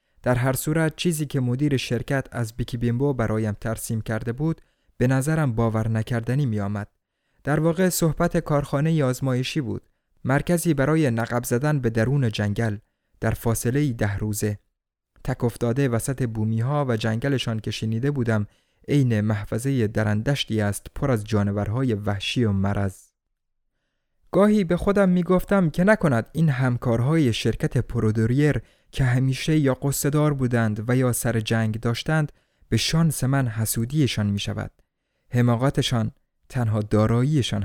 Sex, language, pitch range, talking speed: male, Persian, 110-145 Hz, 135 wpm